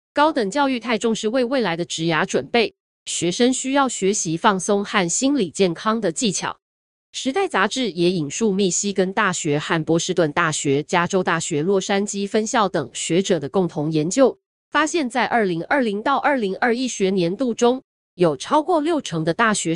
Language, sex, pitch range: Chinese, female, 170-245 Hz